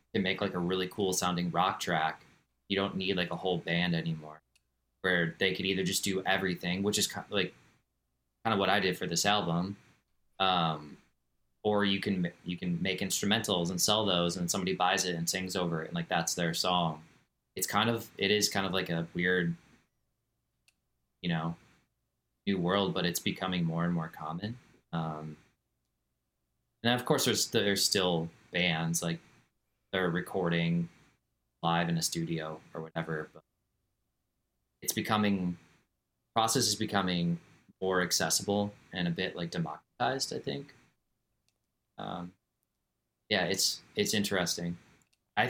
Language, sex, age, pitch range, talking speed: English, male, 20-39, 85-100 Hz, 155 wpm